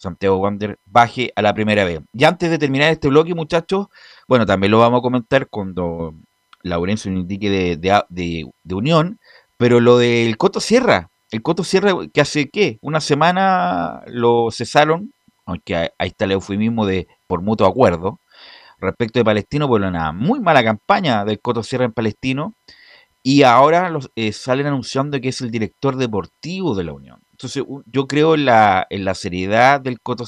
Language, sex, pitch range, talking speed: Spanish, male, 100-135 Hz, 180 wpm